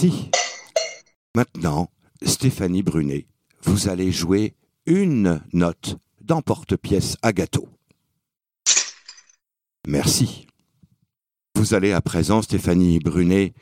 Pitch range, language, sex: 90-150 Hz, French, male